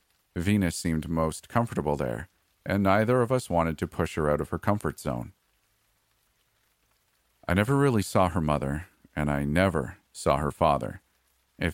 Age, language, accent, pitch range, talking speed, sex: 50-69, English, American, 80-105 Hz, 160 wpm, male